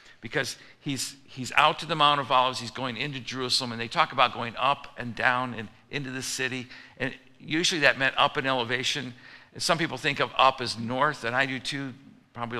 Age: 50-69